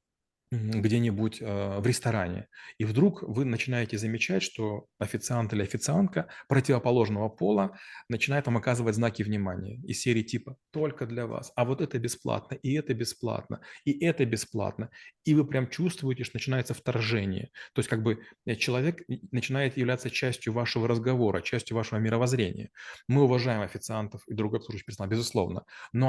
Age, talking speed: 30-49, 150 wpm